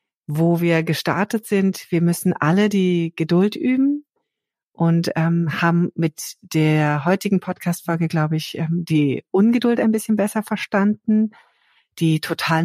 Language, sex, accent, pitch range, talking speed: German, female, German, 155-200 Hz, 135 wpm